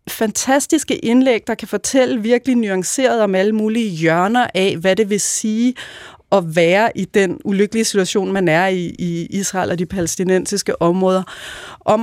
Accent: native